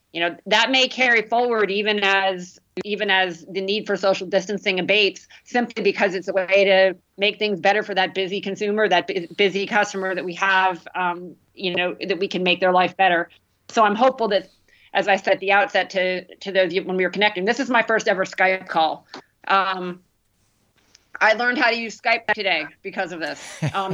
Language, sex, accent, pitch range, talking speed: English, female, American, 185-215 Hz, 205 wpm